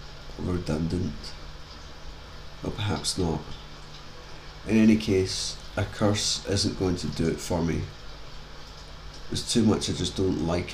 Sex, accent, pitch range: male, British, 75-95 Hz